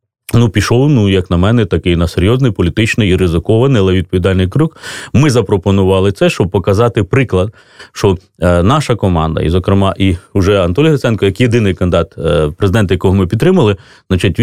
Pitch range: 95-135 Hz